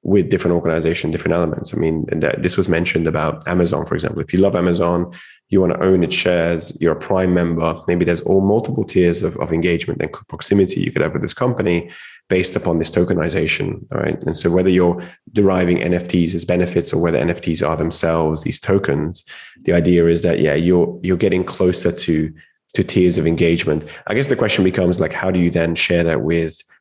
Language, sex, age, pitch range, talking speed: English, male, 20-39, 85-90 Hz, 210 wpm